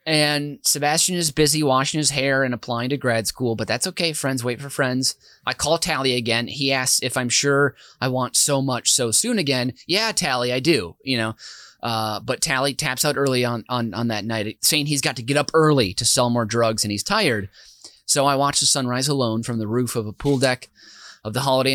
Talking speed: 225 wpm